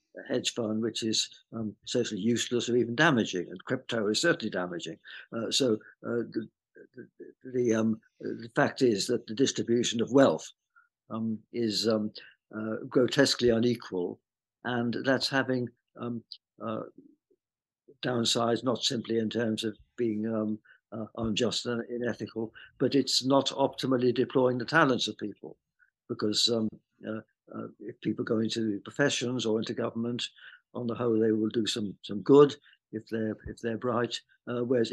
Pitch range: 115-130 Hz